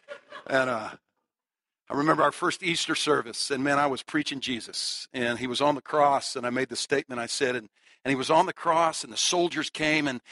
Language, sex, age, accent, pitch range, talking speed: English, male, 60-79, American, 125-150 Hz, 225 wpm